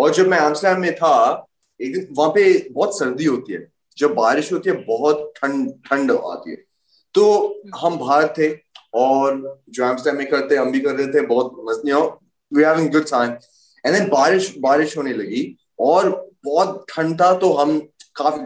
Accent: native